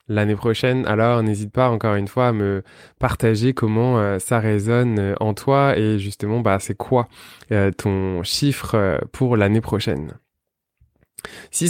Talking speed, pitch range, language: 140 wpm, 110-140 Hz, French